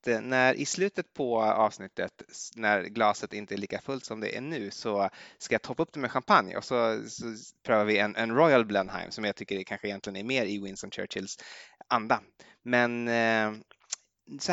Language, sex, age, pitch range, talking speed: Swedish, male, 20-39, 105-145 Hz, 190 wpm